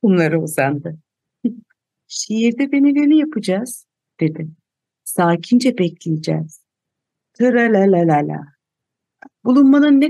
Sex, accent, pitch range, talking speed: female, native, 165-255 Hz, 90 wpm